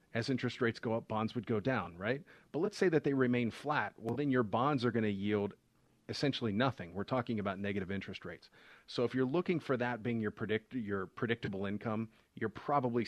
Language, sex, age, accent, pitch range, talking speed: English, male, 40-59, American, 100-125 Hz, 210 wpm